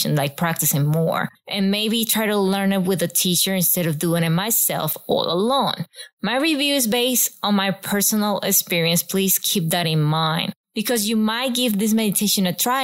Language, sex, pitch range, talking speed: English, female, 175-220 Hz, 185 wpm